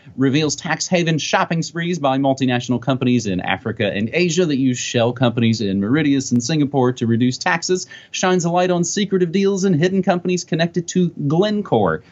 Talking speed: 175 wpm